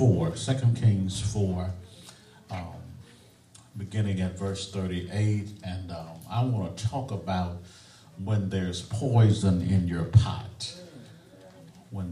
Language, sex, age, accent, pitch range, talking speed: English, male, 50-69, American, 95-120 Hz, 105 wpm